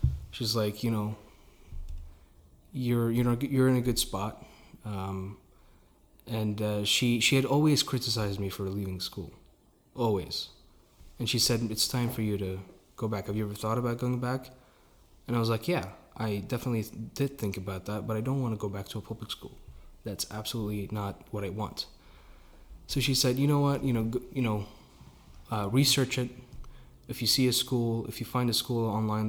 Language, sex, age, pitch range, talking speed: English, male, 20-39, 95-120 Hz, 195 wpm